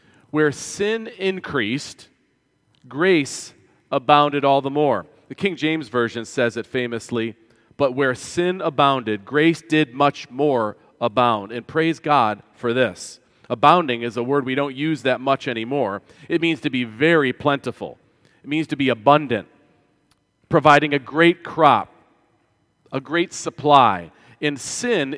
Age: 40-59